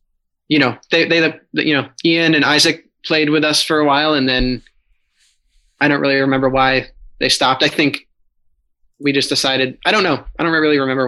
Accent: American